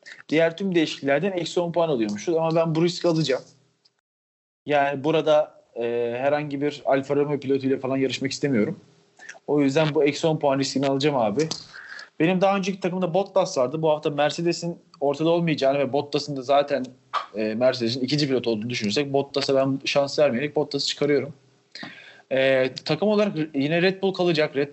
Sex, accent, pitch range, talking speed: male, native, 130-165 Hz, 165 wpm